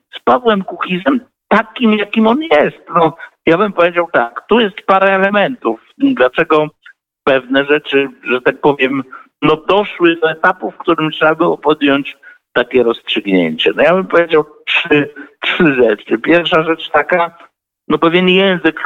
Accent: native